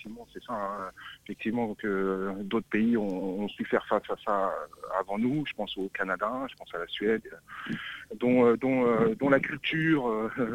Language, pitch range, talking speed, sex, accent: French, 115-145 Hz, 200 wpm, male, French